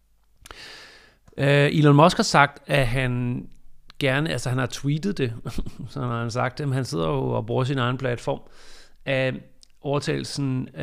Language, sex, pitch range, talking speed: Danish, male, 125-145 Hz, 155 wpm